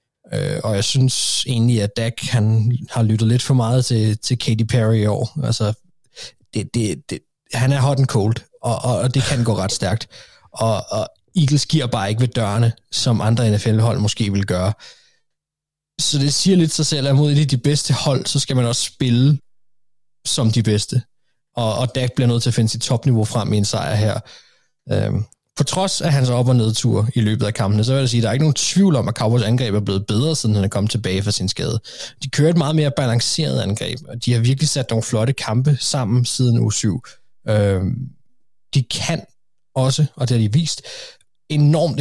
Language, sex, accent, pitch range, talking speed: Danish, male, native, 110-140 Hz, 205 wpm